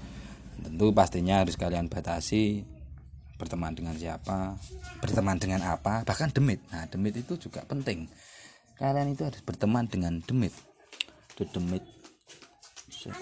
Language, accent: Indonesian, native